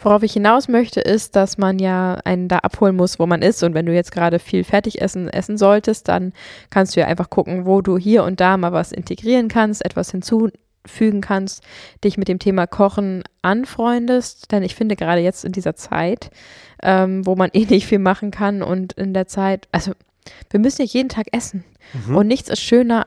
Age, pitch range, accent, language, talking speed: 20-39, 185-215 Hz, German, German, 210 wpm